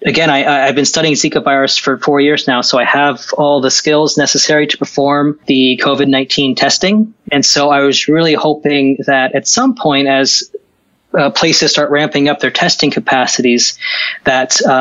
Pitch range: 135-155 Hz